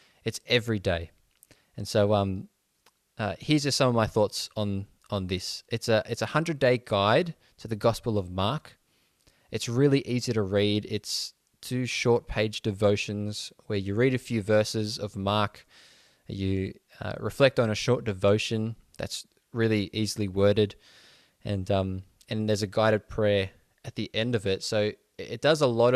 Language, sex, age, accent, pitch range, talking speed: English, male, 20-39, Australian, 100-120 Hz, 170 wpm